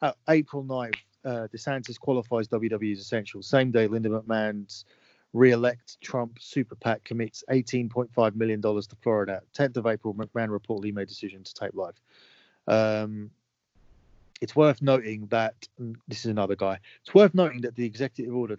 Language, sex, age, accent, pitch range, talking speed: English, male, 30-49, British, 105-120 Hz, 160 wpm